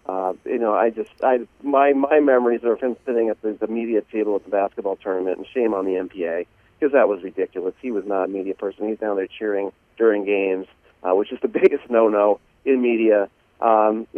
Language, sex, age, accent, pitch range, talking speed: English, male, 40-59, American, 95-115 Hz, 220 wpm